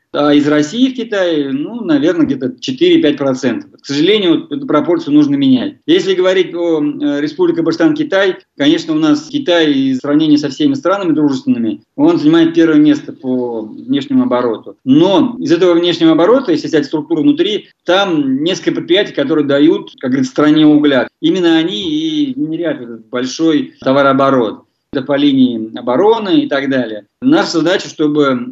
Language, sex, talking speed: Russian, male, 150 wpm